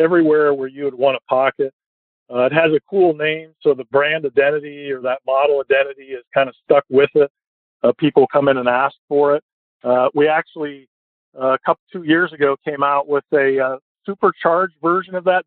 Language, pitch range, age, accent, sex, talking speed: English, 140-165 Hz, 50-69, American, male, 205 wpm